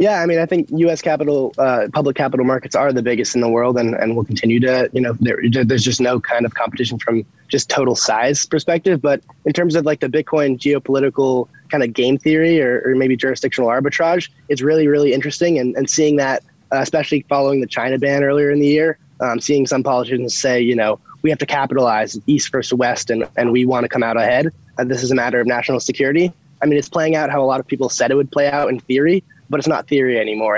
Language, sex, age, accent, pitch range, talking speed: English, male, 20-39, American, 125-145 Hz, 240 wpm